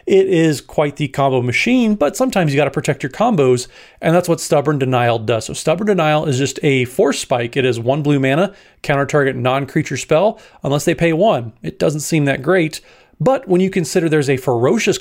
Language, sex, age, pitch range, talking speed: English, male, 30-49, 130-175 Hz, 210 wpm